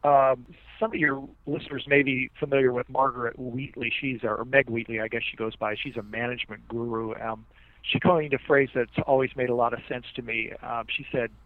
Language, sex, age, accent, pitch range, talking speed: English, male, 40-59, American, 115-135 Hz, 220 wpm